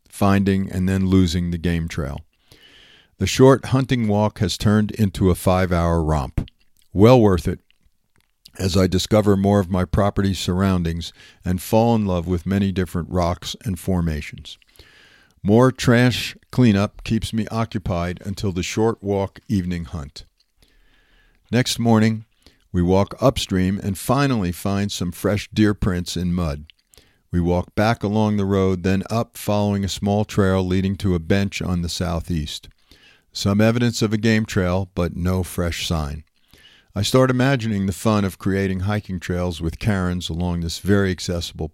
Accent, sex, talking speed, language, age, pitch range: American, male, 155 wpm, English, 50-69, 90-105 Hz